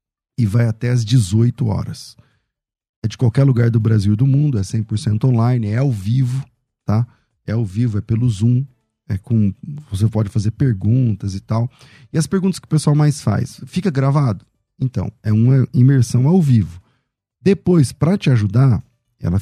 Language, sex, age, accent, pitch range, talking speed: Portuguese, male, 40-59, Brazilian, 110-135 Hz, 175 wpm